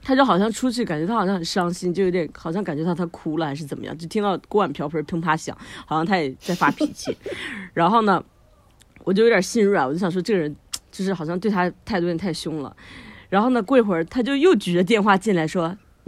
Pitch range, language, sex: 165-230 Hz, Chinese, female